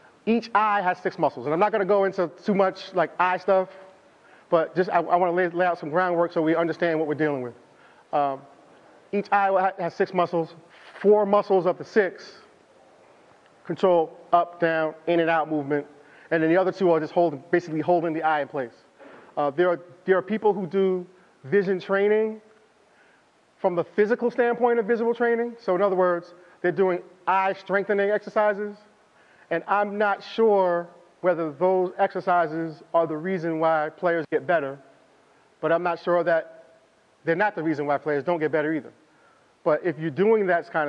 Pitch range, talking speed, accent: 165-200 Hz, 190 wpm, American